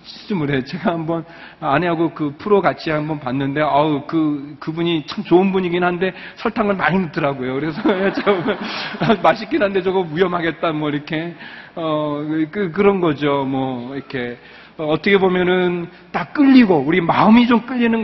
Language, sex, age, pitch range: Korean, male, 40-59, 150-210 Hz